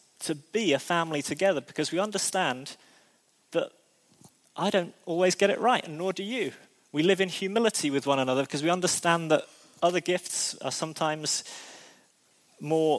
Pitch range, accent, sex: 140-170 Hz, British, male